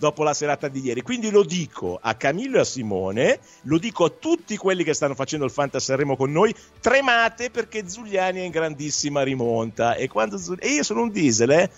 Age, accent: 50-69, native